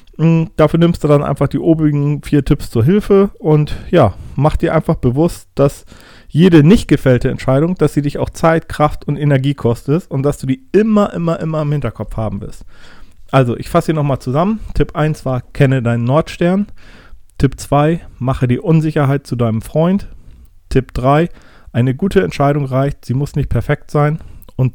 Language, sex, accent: German, male, German